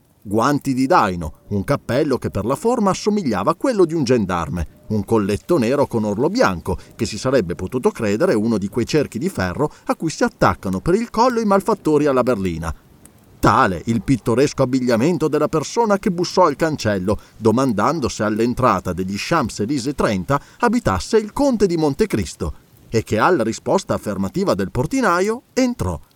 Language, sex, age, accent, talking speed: Italian, male, 30-49, native, 165 wpm